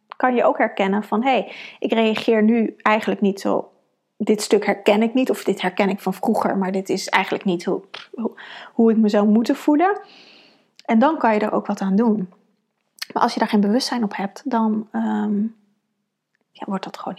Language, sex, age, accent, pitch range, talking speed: Dutch, female, 30-49, Dutch, 205-245 Hz, 195 wpm